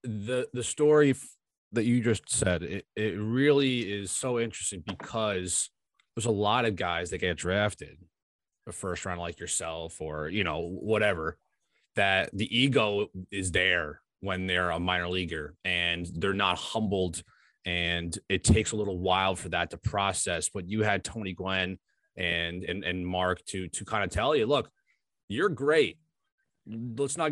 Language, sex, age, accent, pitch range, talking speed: English, male, 30-49, American, 95-130 Hz, 165 wpm